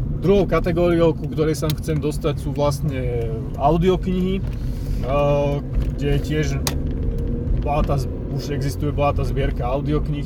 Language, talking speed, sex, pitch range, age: Slovak, 105 wpm, male, 125-145 Hz, 30-49